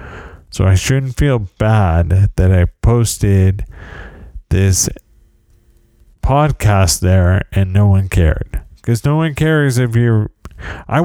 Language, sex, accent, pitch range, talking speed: English, male, American, 95-130 Hz, 120 wpm